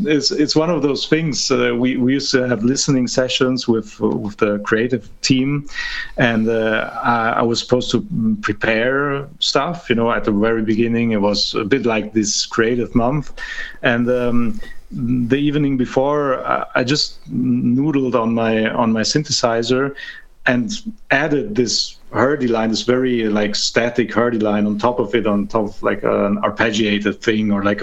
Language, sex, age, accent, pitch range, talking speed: English, male, 40-59, German, 110-130 Hz, 175 wpm